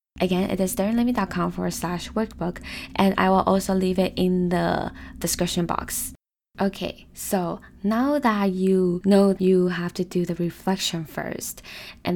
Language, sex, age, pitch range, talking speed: English, female, 20-39, 175-195 Hz, 155 wpm